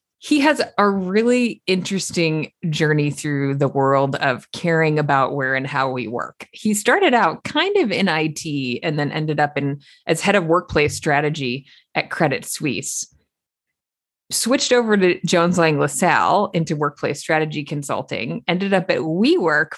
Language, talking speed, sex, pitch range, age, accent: English, 155 wpm, female, 145-195 Hz, 20-39, American